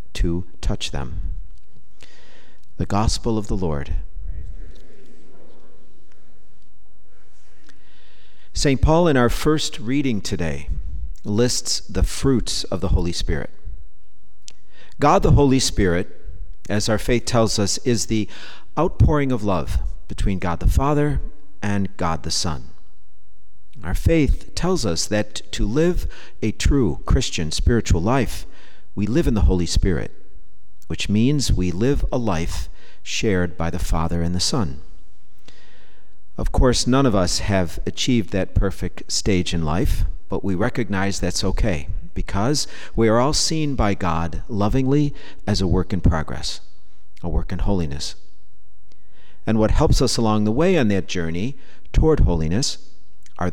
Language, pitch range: English, 85-110 Hz